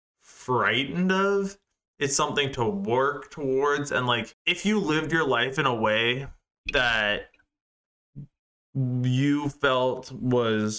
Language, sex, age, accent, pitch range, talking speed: English, male, 20-39, American, 125-160 Hz, 115 wpm